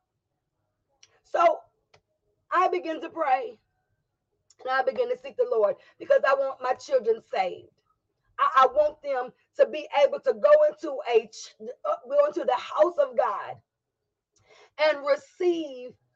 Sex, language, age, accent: female, English, 40-59, American